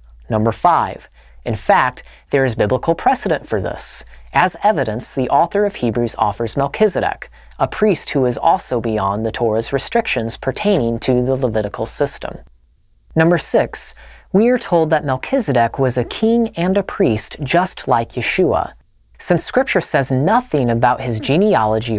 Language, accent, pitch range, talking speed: English, American, 115-165 Hz, 150 wpm